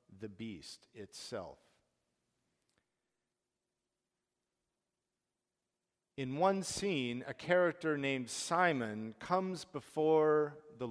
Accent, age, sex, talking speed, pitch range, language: American, 50-69, male, 70 wpm, 115-155 Hz, English